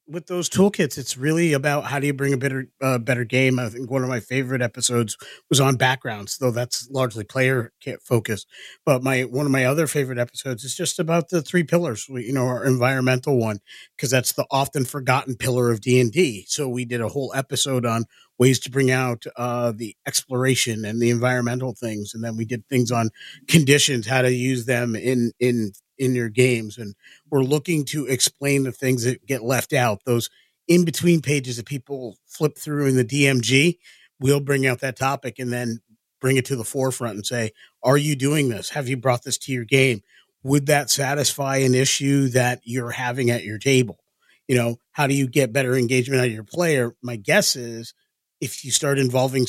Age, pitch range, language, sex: 30-49, 120-140 Hz, English, male